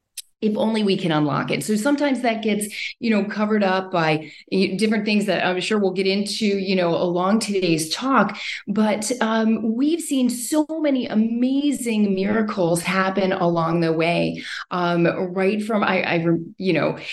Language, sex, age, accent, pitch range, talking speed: English, female, 30-49, American, 175-215 Hz, 165 wpm